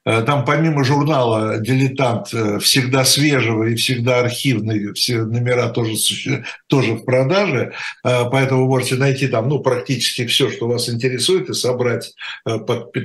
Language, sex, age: Russian, male, 60-79